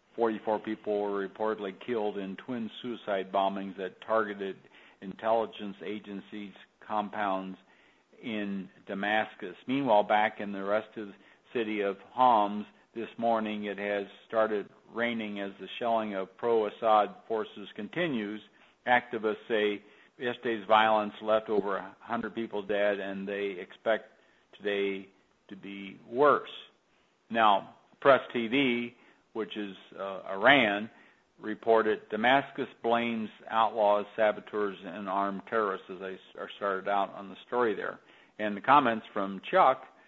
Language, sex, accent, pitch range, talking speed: English, male, American, 100-115 Hz, 125 wpm